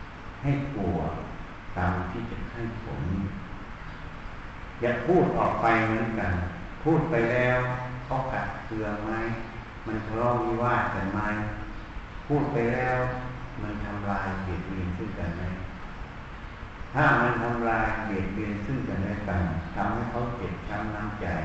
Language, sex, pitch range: Thai, male, 95-125 Hz